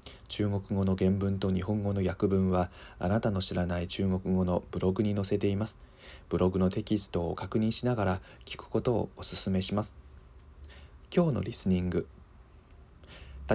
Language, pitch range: Japanese, 80-105 Hz